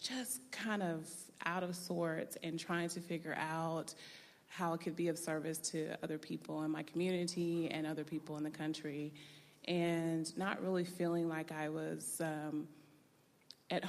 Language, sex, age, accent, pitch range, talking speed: English, female, 30-49, American, 165-185 Hz, 165 wpm